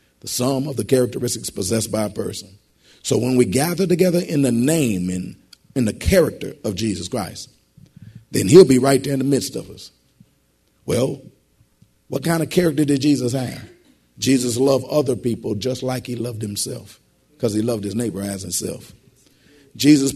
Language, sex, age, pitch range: English, male, 50-69, 115-160 Hz